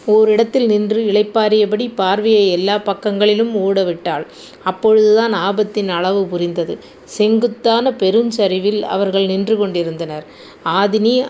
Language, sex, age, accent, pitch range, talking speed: Tamil, female, 30-49, native, 185-220 Hz, 90 wpm